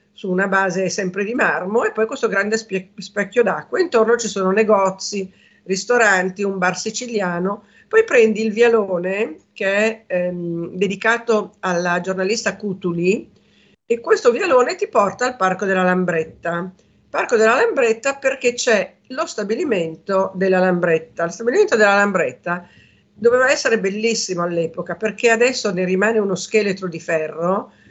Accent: native